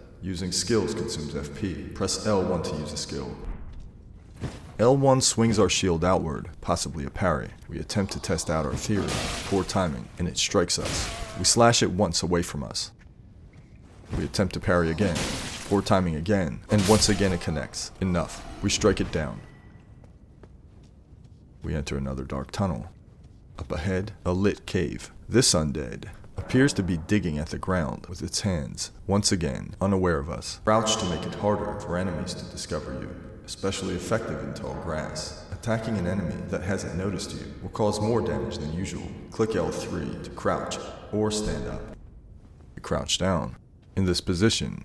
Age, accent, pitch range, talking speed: 30-49, American, 80-105 Hz, 165 wpm